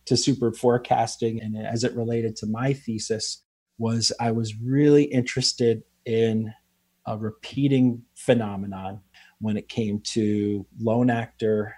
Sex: male